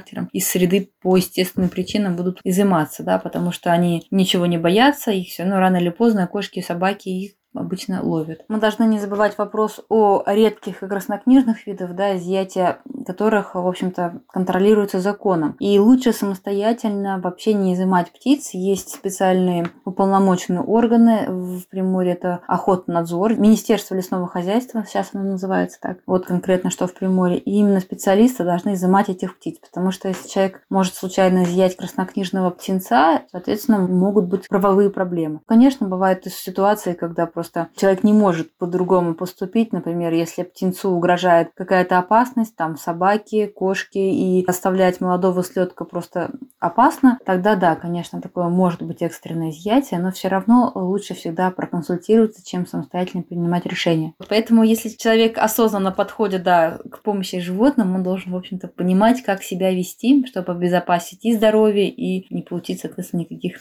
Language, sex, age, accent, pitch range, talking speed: Russian, female, 20-39, native, 180-210 Hz, 150 wpm